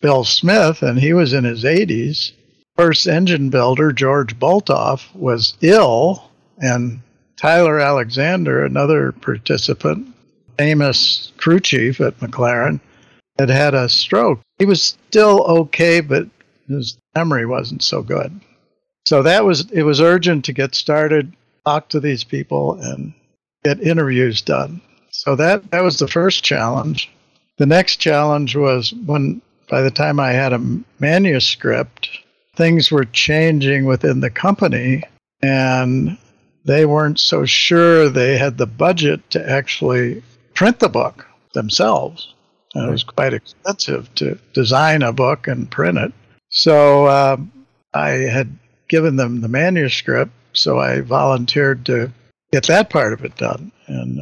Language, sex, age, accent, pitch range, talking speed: English, male, 60-79, American, 125-160 Hz, 140 wpm